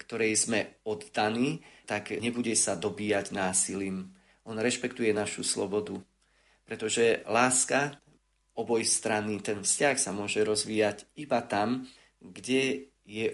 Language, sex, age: Slovak, male, 40-59